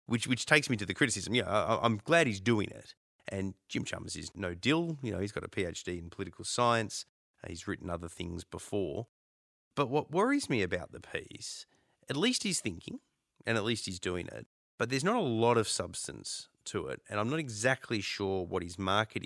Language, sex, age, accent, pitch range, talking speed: English, male, 30-49, Australian, 85-115 Hz, 210 wpm